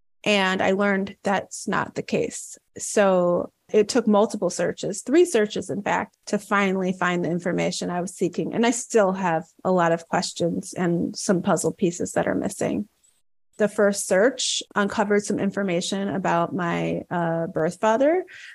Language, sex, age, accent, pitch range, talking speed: English, female, 30-49, American, 180-235 Hz, 160 wpm